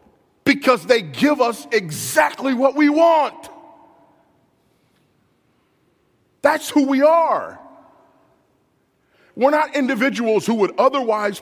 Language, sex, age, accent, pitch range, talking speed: English, male, 40-59, American, 195-275 Hz, 95 wpm